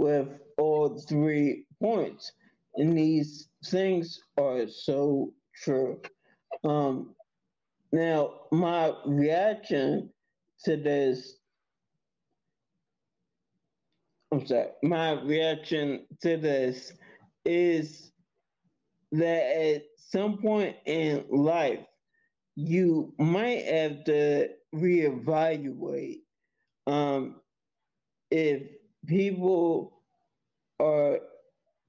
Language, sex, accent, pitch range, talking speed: English, male, American, 145-175 Hz, 70 wpm